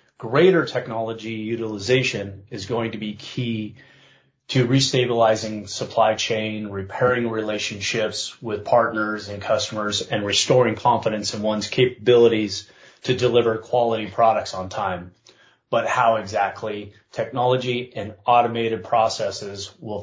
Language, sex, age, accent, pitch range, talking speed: English, male, 30-49, American, 105-125 Hz, 115 wpm